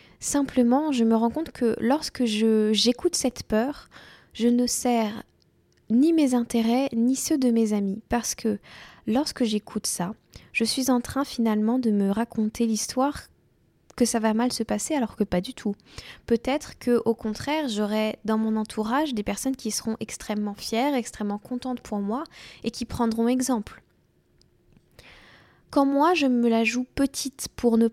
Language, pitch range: French, 215-255 Hz